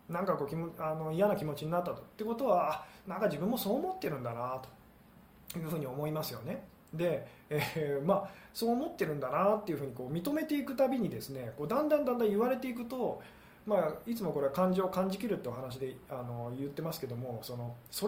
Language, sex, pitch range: Japanese, male, 145-210 Hz